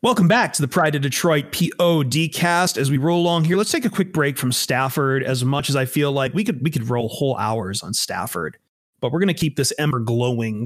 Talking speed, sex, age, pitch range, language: 240 wpm, male, 30-49, 130-175 Hz, English